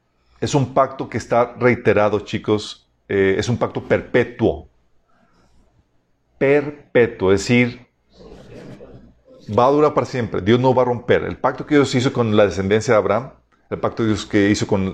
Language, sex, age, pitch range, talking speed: Spanish, male, 40-59, 90-120 Hz, 165 wpm